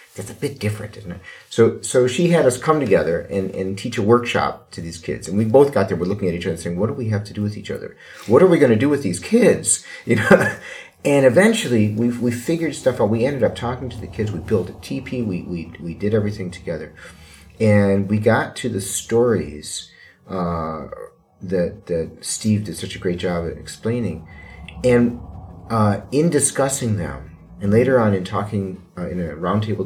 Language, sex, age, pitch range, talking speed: Bulgarian, male, 40-59, 90-115 Hz, 215 wpm